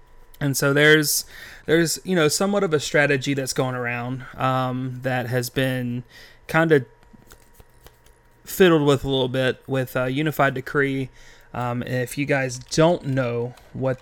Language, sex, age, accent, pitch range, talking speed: English, male, 30-49, American, 125-145 Hz, 150 wpm